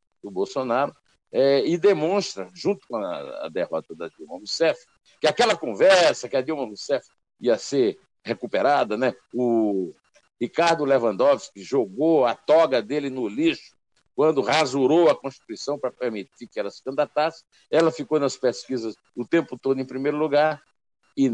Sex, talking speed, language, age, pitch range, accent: male, 150 wpm, Portuguese, 60-79, 110-155 Hz, Brazilian